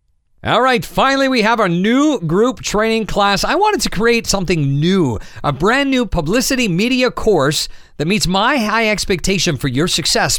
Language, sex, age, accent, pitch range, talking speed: English, male, 40-59, American, 135-200 Hz, 175 wpm